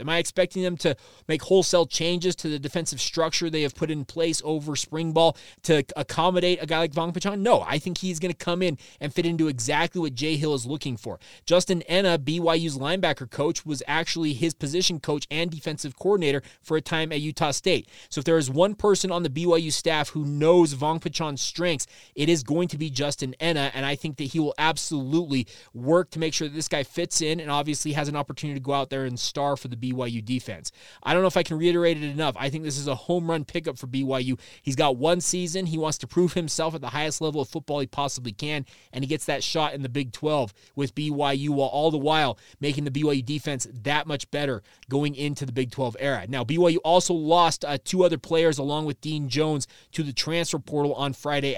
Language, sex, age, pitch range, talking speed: English, male, 20-39, 140-165 Hz, 235 wpm